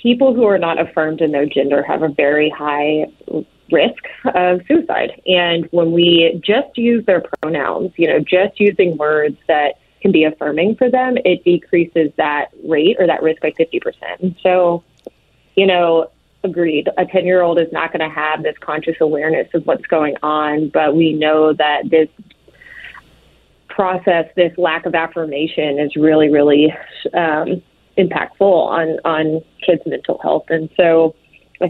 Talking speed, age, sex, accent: 155 wpm, 30-49, female, American